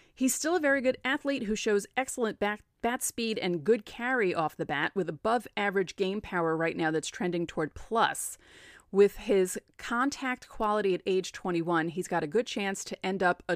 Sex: female